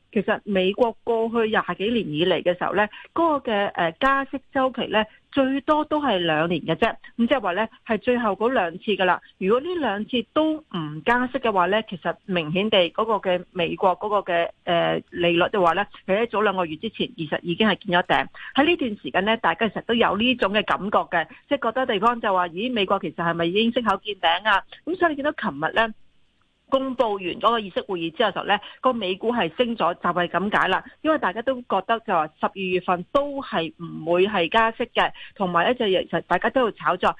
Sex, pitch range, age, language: female, 175-235 Hz, 40-59, Chinese